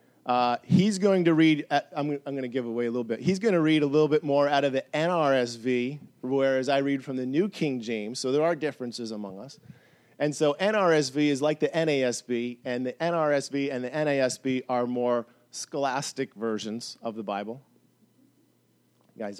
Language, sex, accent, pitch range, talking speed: English, male, American, 120-145 Hz, 185 wpm